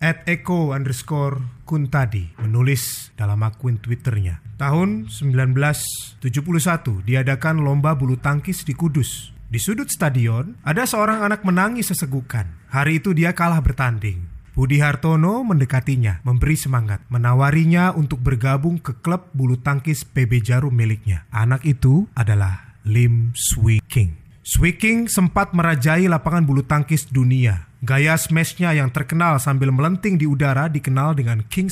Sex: male